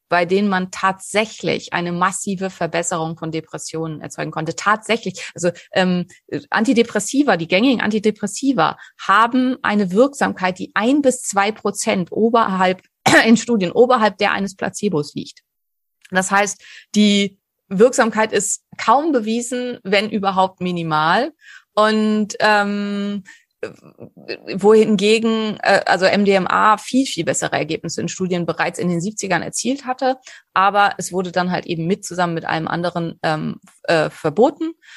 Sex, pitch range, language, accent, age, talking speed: female, 180-220 Hz, German, German, 30-49, 125 wpm